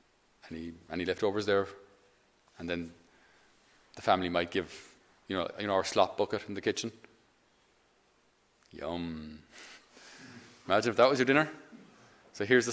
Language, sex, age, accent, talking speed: English, male, 30-49, Irish, 130 wpm